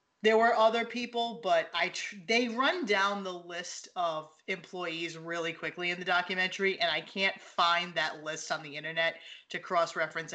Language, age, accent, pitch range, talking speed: English, 30-49, American, 170-215 Hz, 175 wpm